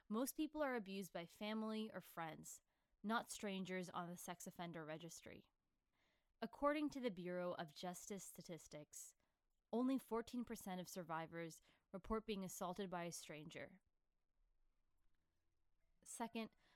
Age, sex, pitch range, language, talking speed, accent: 20-39, female, 150-215 Hz, English, 120 wpm, American